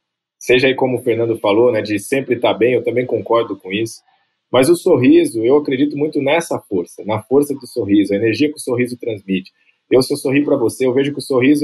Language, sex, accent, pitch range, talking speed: Portuguese, male, Brazilian, 130-165 Hz, 230 wpm